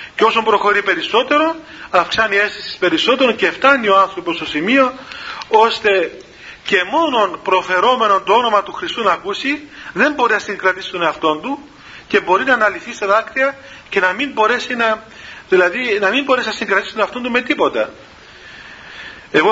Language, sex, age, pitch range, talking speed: Greek, male, 40-59, 175-240 Hz, 165 wpm